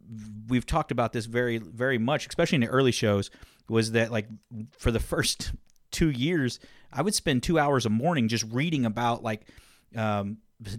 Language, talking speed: English, 180 wpm